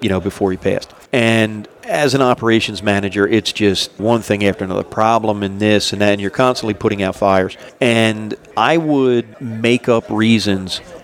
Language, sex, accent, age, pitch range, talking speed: English, male, American, 40-59, 100-110 Hz, 180 wpm